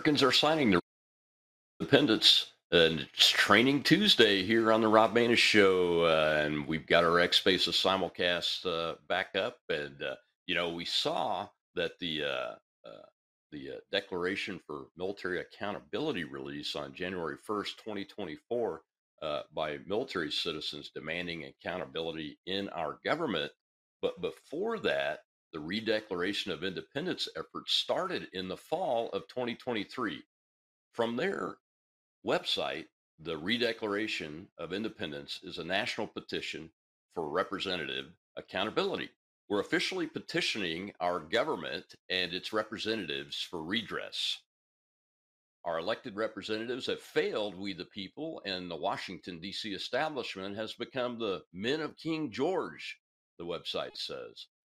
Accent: American